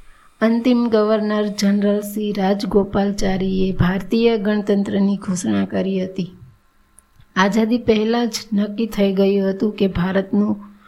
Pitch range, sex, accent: 200-220 Hz, female, native